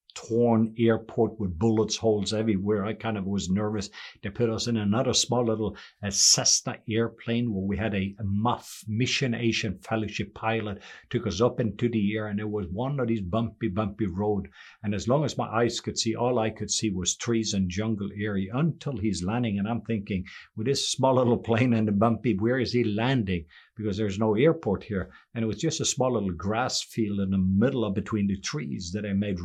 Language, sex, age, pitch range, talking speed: English, male, 50-69, 100-115 Hz, 210 wpm